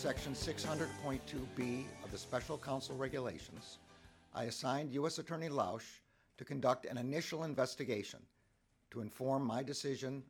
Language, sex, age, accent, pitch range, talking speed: English, male, 60-79, American, 115-140 Hz, 120 wpm